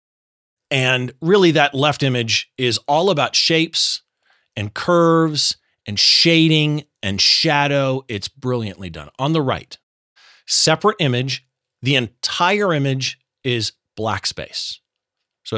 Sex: male